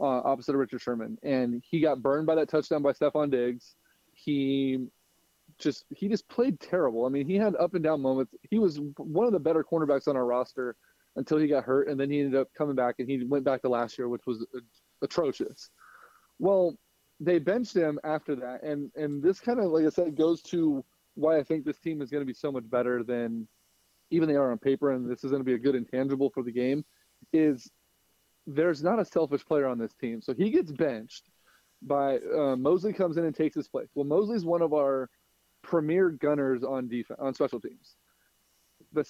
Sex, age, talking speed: male, 20-39, 220 wpm